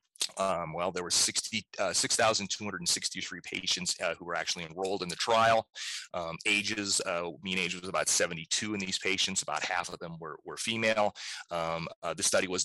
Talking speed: 185 wpm